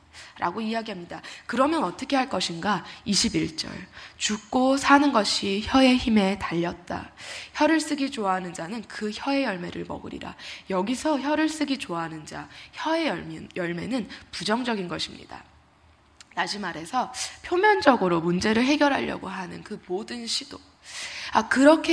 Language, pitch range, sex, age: Korean, 190-275 Hz, female, 20-39